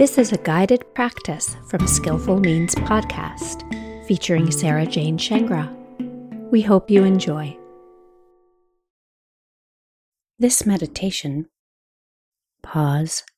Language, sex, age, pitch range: English, female, 40-59, 150-200 Hz